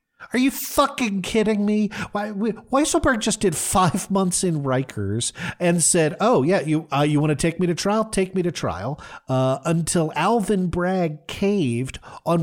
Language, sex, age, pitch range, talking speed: English, male, 50-69, 130-185 Hz, 175 wpm